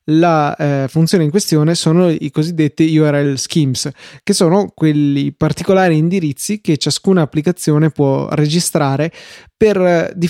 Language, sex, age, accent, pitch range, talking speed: Italian, male, 20-39, native, 145-165 Hz, 130 wpm